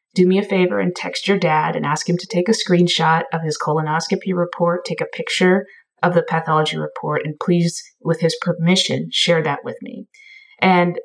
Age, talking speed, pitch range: 20-39, 195 wpm, 165-195 Hz